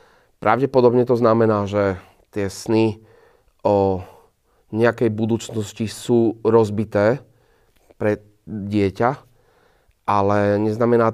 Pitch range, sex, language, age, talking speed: 100-115 Hz, male, Slovak, 30-49, 80 wpm